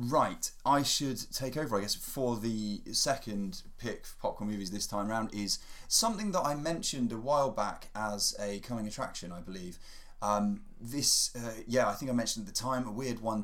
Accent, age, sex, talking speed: British, 20-39, male, 200 wpm